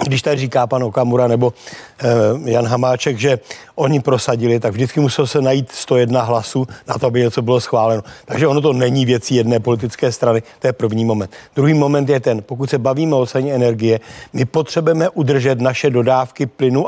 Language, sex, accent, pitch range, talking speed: Czech, male, native, 125-145 Hz, 190 wpm